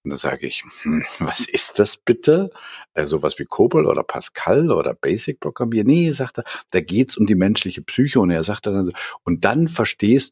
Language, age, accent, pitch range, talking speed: German, 60-79, German, 75-105 Hz, 205 wpm